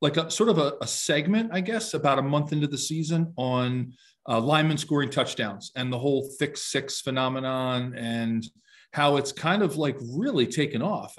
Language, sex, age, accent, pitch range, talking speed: English, male, 40-59, American, 120-155 Hz, 190 wpm